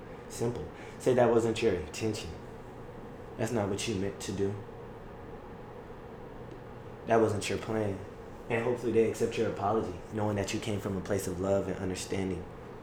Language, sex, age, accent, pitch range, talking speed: English, male, 20-39, American, 95-115 Hz, 160 wpm